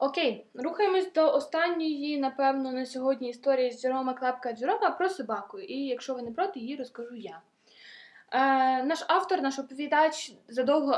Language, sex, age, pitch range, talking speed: Ukrainian, female, 20-39, 245-320 Hz, 155 wpm